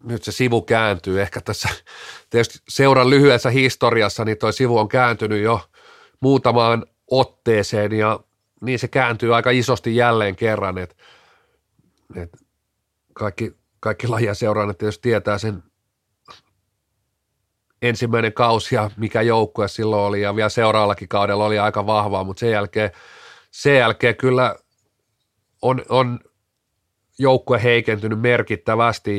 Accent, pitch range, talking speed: native, 100-115 Hz, 115 wpm